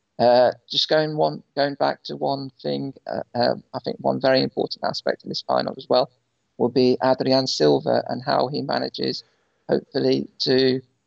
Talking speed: 170 wpm